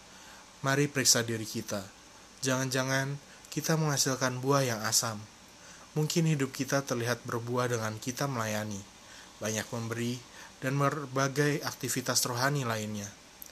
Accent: native